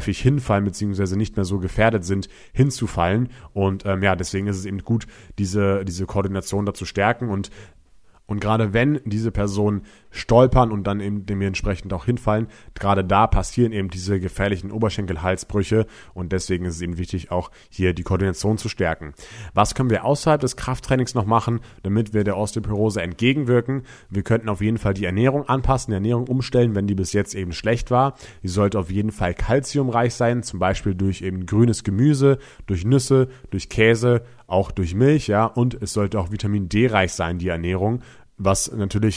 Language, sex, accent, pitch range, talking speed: German, male, German, 95-110 Hz, 180 wpm